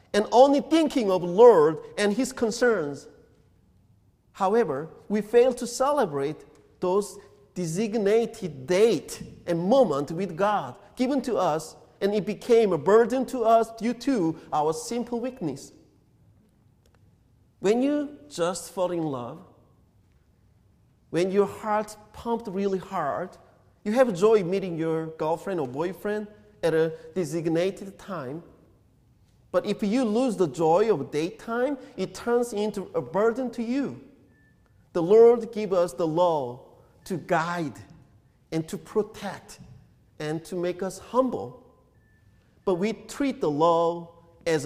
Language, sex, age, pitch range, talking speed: English, male, 40-59, 140-215 Hz, 130 wpm